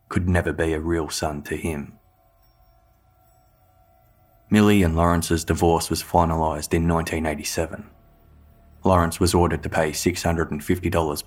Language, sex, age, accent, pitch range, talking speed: English, male, 20-39, Australian, 80-90 Hz, 115 wpm